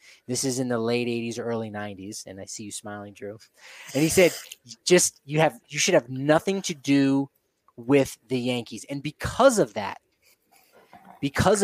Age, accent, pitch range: 20-39, American, 115-140 Hz